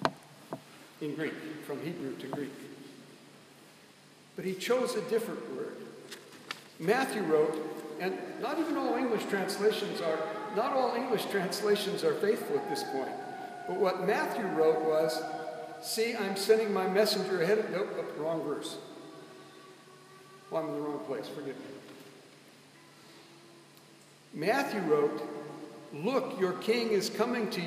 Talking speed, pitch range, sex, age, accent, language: 130 wpm, 165-235 Hz, male, 60-79, American, English